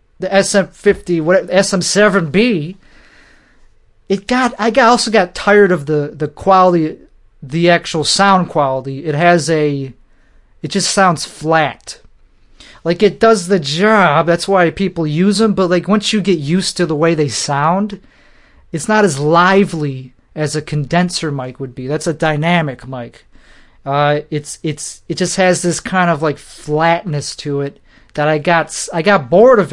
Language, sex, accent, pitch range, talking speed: English, male, American, 150-195 Hz, 165 wpm